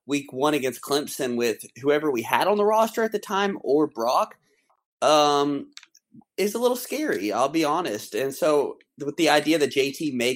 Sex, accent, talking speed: male, American, 185 wpm